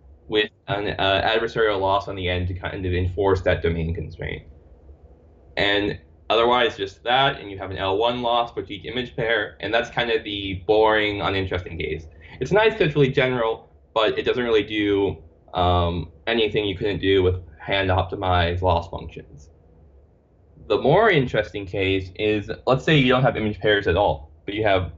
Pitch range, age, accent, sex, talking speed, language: 80-115 Hz, 10-29, American, male, 175 wpm, English